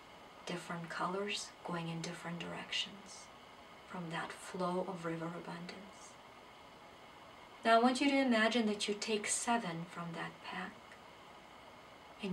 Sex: female